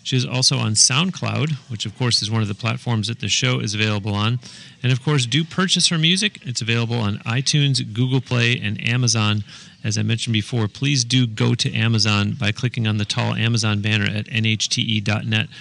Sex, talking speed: male, 200 wpm